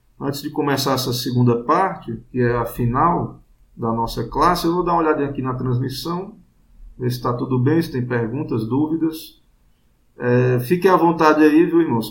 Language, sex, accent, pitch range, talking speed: Portuguese, male, Brazilian, 115-155 Hz, 180 wpm